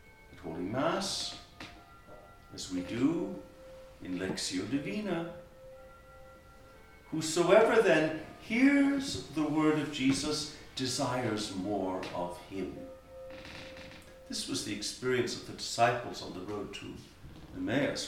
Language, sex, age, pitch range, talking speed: English, male, 60-79, 105-155 Hz, 105 wpm